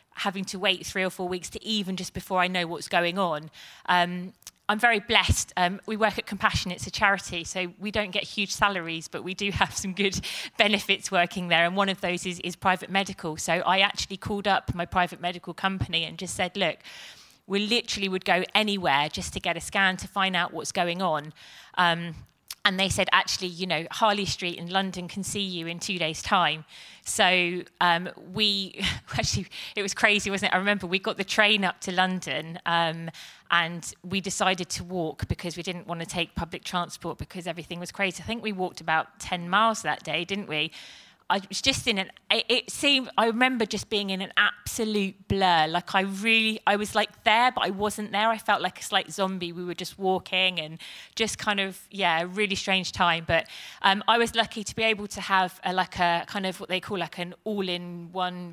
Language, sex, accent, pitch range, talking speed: English, female, British, 175-200 Hz, 215 wpm